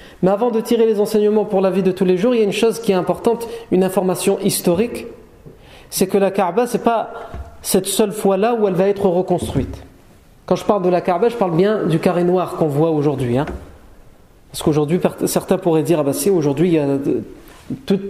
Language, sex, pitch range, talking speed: French, male, 155-195 Hz, 225 wpm